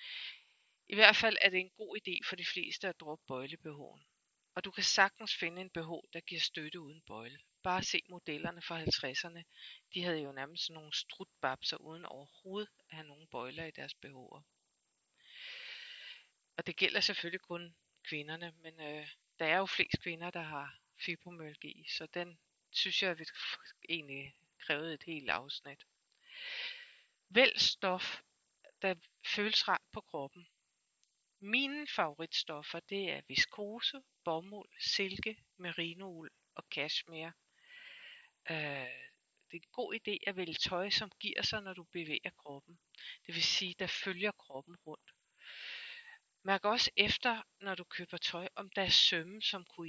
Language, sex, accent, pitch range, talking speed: Danish, female, native, 165-210 Hz, 150 wpm